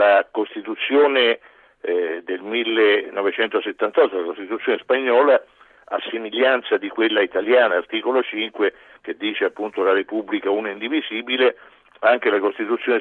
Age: 50-69